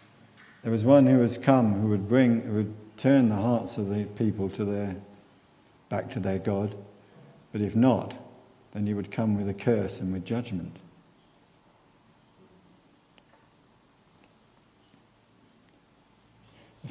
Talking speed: 130 wpm